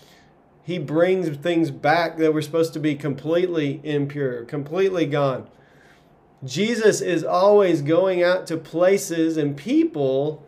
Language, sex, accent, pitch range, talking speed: English, male, American, 140-170 Hz, 125 wpm